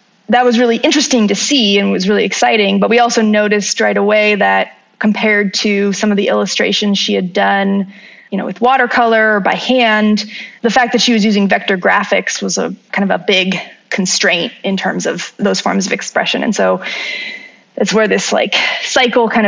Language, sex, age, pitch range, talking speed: English, female, 20-39, 195-230 Hz, 190 wpm